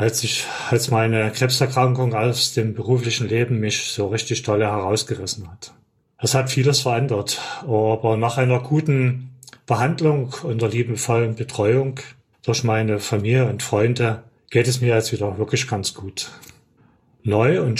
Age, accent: 30-49, German